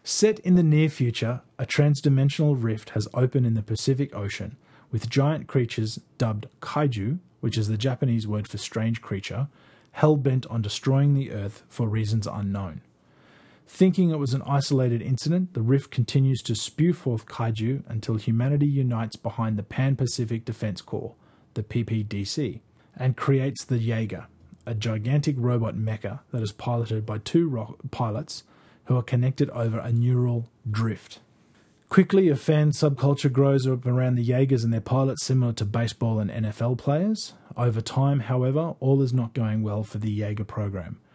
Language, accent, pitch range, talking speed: English, Australian, 110-135 Hz, 160 wpm